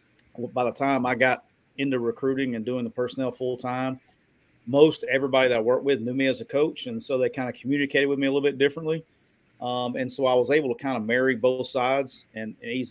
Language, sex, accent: English, male, American